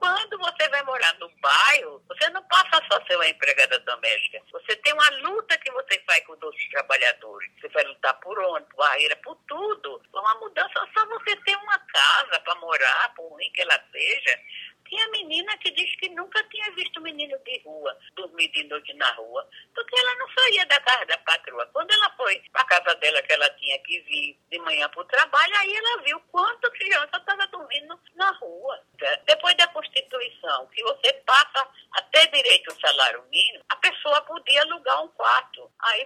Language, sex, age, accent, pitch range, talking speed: Portuguese, female, 50-69, Brazilian, 265-420 Hz, 190 wpm